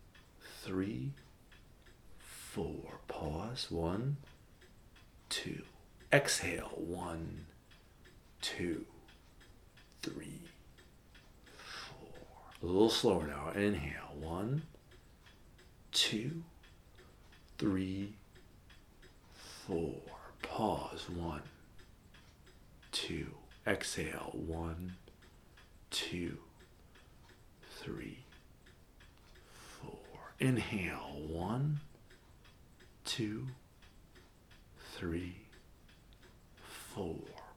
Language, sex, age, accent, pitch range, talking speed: English, male, 50-69, American, 80-105 Hz, 50 wpm